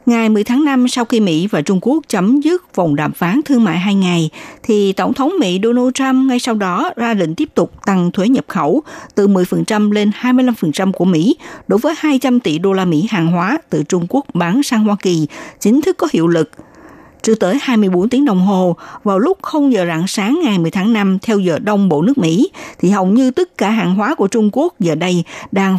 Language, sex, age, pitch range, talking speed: Vietnamese, female, 60-79, 180-260 Hz, 230 wpm